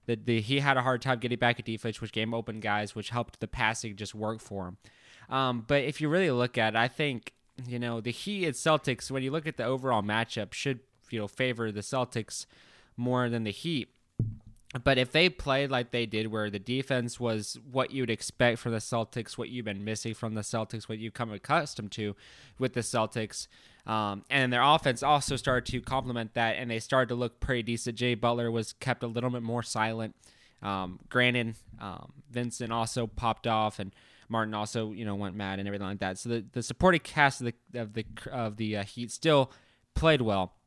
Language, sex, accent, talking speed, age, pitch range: English, male, American, 220 wpm, 20-39, 110-130 Hz